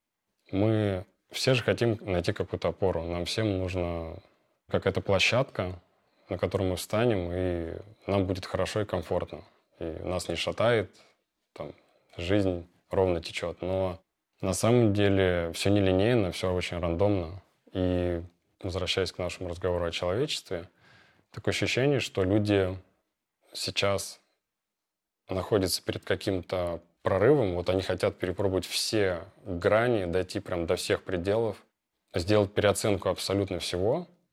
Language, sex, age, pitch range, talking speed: Russian, male, 20-39, 90-100 Hz, 125 wpm